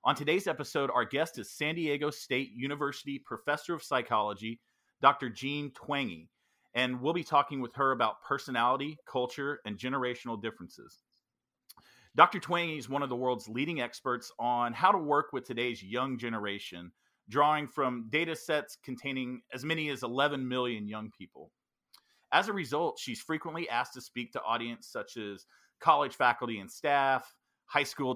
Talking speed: 160 wpm